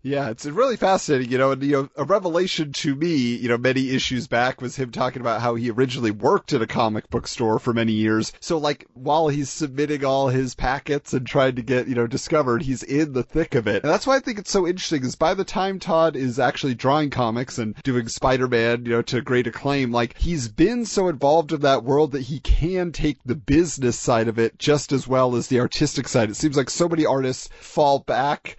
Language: English